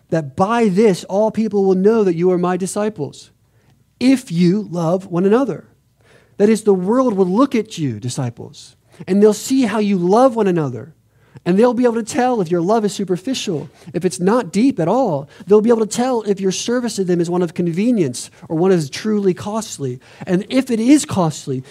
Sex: male